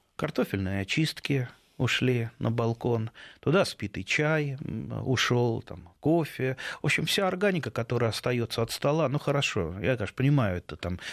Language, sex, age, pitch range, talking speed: Russian, male, 30-49, 100-130 Hz, 135 wpm